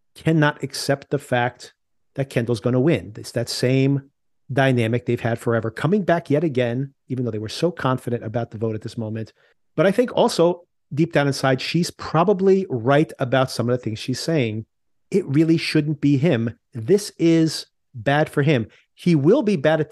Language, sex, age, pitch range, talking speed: English, male, 40-59, 120-155 Hz, 195 wpm